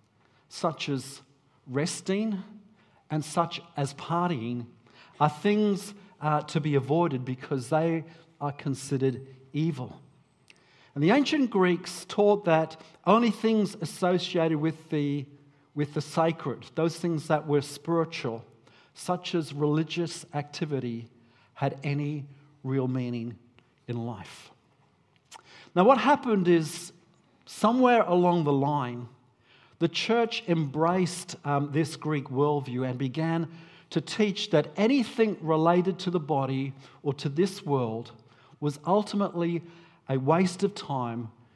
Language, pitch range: English, 135-170 Hz